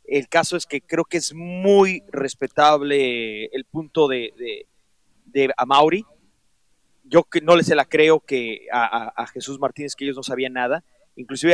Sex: male